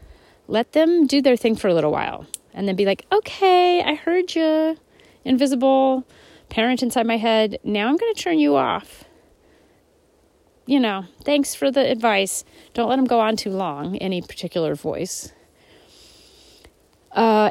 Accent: American